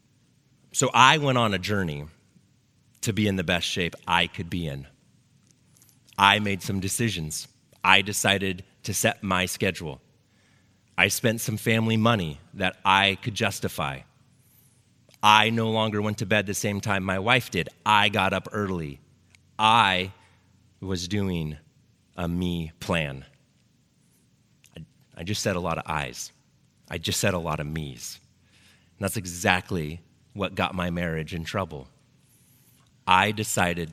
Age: 30-49